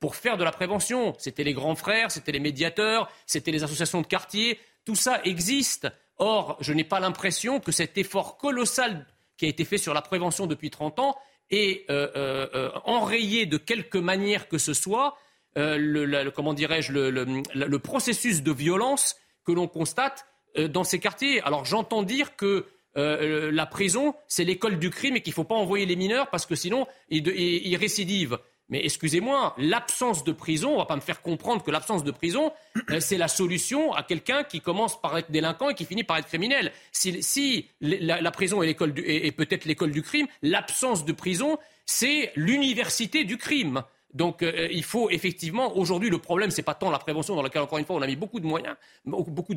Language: French